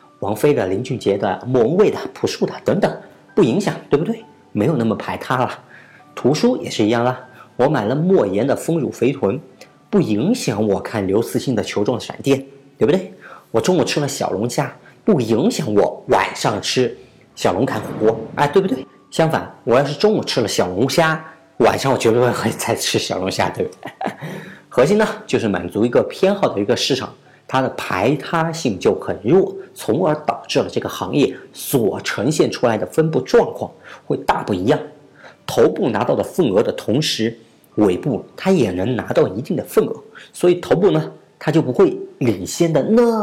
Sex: male